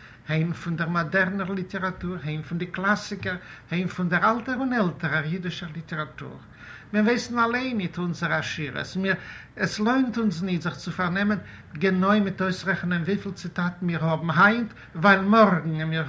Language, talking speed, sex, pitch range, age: English, 170 wpm, male, 155-205 Hz, 60-79